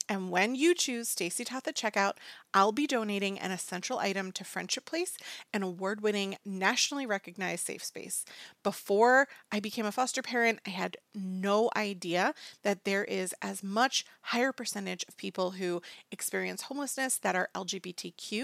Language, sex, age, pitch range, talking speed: English, female, 30-49, 195-265 Hz, 155 wpm